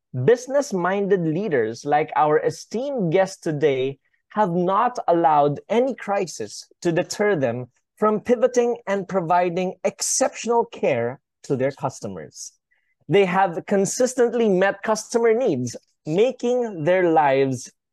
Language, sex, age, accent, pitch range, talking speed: English, male, 20-39, Filipino, 155-230 Hz, 110 wpm